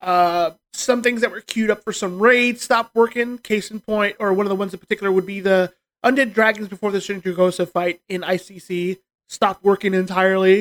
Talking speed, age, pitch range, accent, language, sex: 205 wpm, 20-39, 185-225 Hz, American, English, male